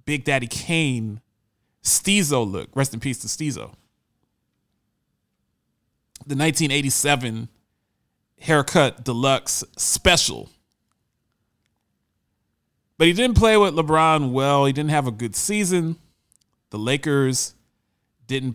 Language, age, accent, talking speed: English, 30-49, American, 100 wpm